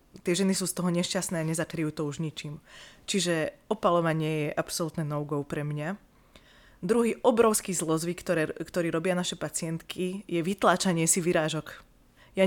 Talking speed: 145 wpm